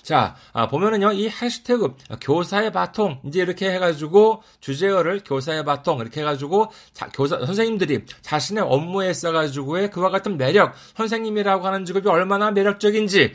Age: 40-59